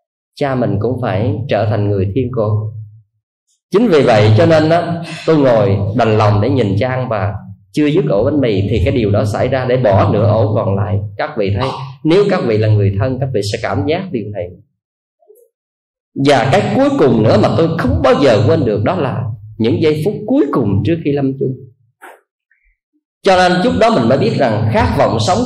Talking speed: 210 wpm